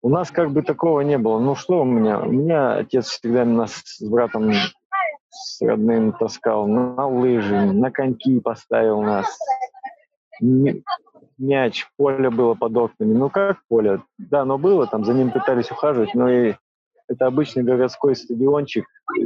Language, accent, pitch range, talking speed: Russian, native, 120-165 Hz, 155 wpm